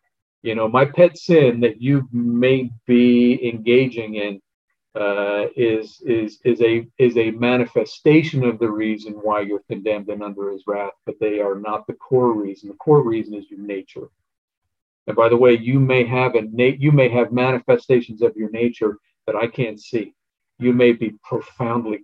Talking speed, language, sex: 160 wpm, English, male